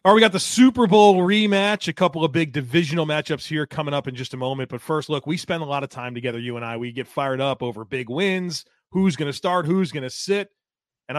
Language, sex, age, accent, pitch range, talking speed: English, male, 30-49, American, 130-170 Hz, 270 wpm